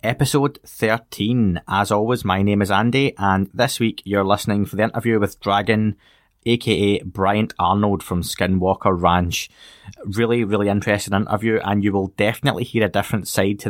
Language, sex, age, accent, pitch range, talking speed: English, male, 20-39, British, 100-115 Hz, 160 wpm